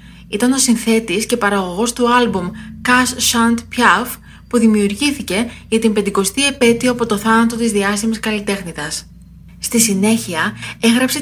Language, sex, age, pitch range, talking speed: Greek, female, 20-39, 200-245 Hz, 135 wpm